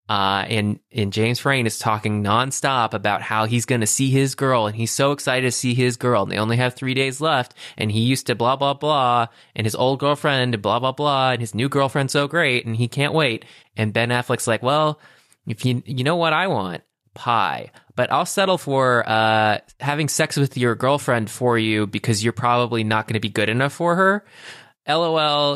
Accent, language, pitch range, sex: American, English, 105-130 Hz, male